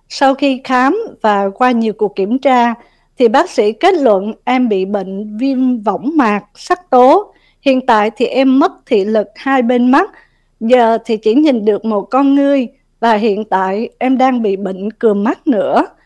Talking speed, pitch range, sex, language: 185 wpm, 215-280 Hz, female, Vietnamese